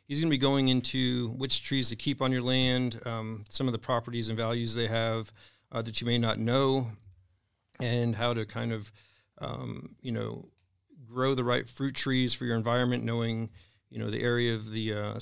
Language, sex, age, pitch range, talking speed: English, male, 40-59, 115-125 Hz, 205 wpm